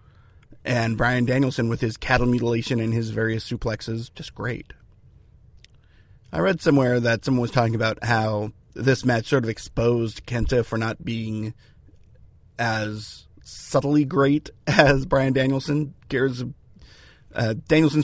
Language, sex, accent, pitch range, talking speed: English, male, American, 110-135 Hz, 130 wpm